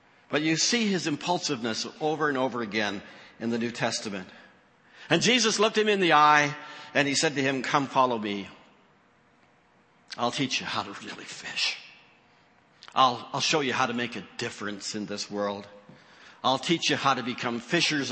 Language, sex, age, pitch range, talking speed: English, male, 60-79, 110-145 Hz, 180 wpm